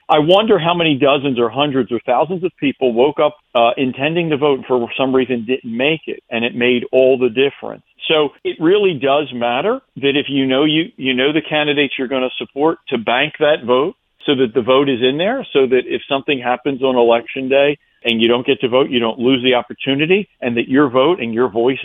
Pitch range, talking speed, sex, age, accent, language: 120-150 Hz, 235 wpm, male, 50-69, American, English